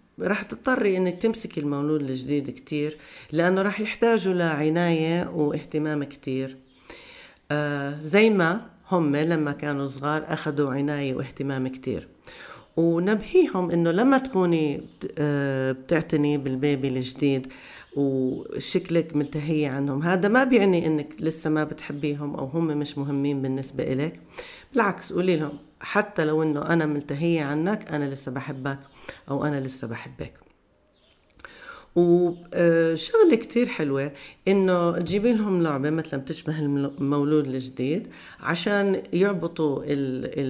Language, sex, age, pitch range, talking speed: Arabic, female, 40-59, 140-170 Hz, 115 wpm